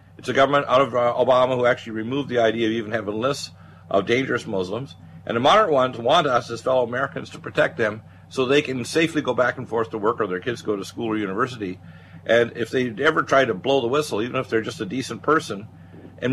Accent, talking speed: American, 245 wpm